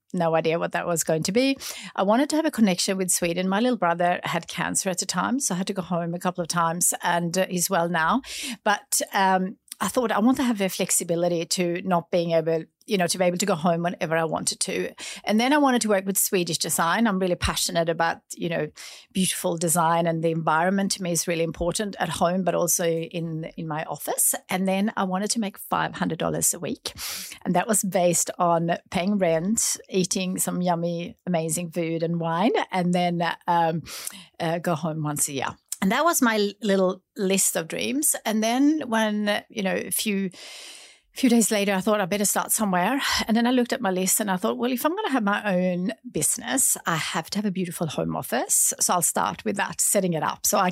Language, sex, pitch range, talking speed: English, female, 170-210 Hz, 225 wpm